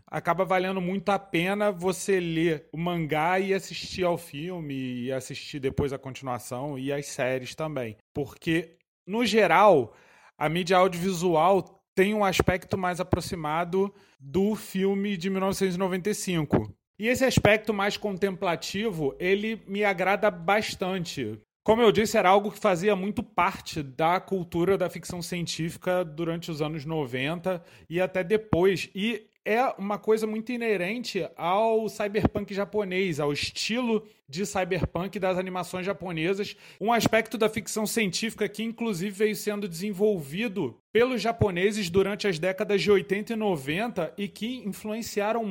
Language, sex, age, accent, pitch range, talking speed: Portuguese, male, 30-49, Brazilian, 170-210 Hz, 140 wpm